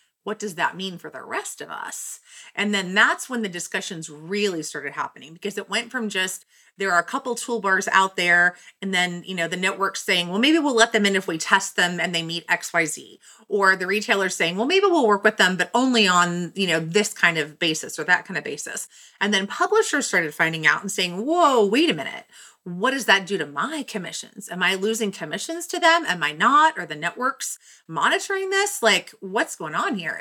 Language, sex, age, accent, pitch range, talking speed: English, female, 30-49, American, 175-235 Hz, 225 wpm